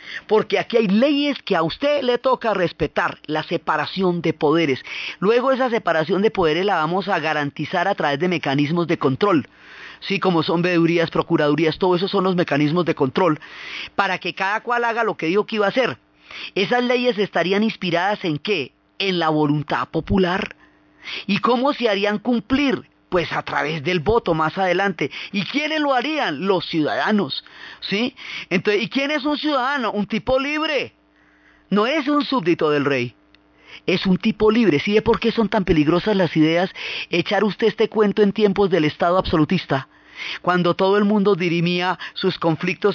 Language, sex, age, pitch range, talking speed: Spanish, female, 30-49, 160-205 Hz, 175 wpm